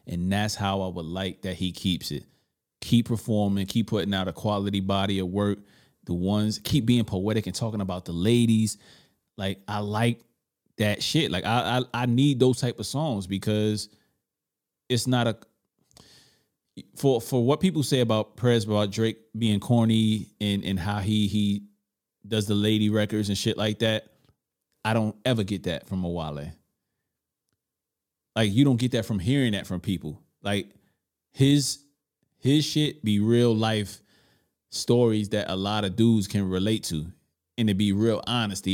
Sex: male